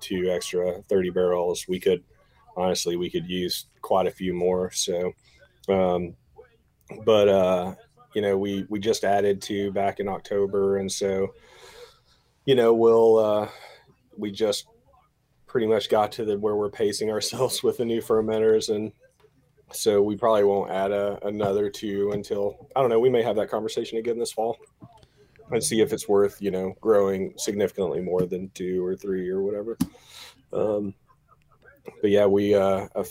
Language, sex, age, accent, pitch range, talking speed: English, male, 30-49, American, 95-110 Hz, 165 wpm